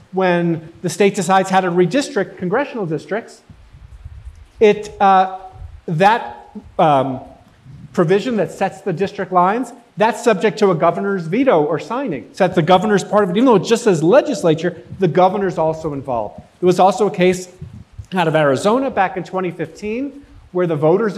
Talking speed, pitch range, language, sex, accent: 160 wpm, 165-210 Hz, English, male, American